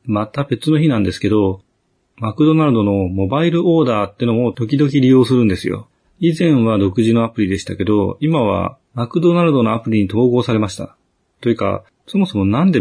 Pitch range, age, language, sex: 105-160 Hz, 40-59, Japanese, male